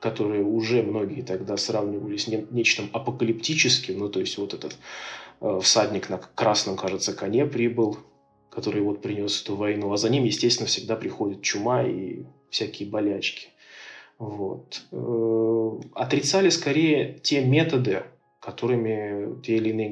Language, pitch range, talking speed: Russian, 105-125 Hz, 140 wpm